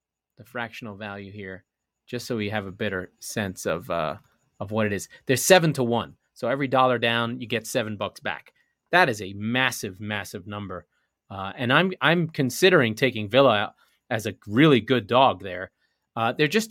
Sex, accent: male, American